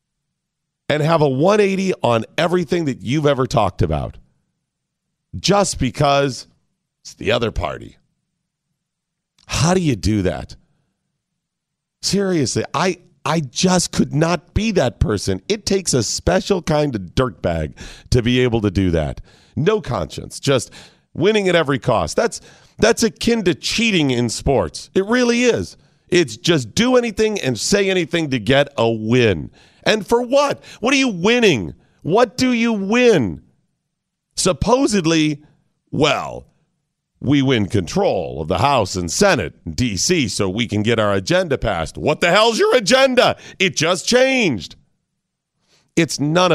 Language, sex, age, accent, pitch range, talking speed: English, male, 40-59, American, 130-200 Hz, 145 wpm